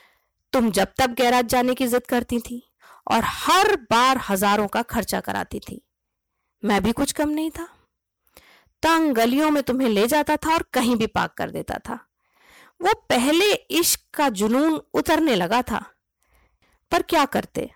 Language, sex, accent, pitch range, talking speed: Hindi, female, native, 220-300 Hz, 160 wpm